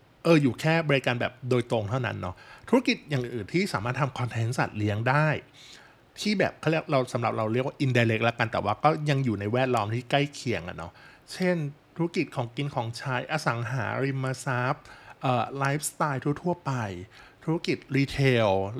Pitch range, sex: 115-145 Hz, male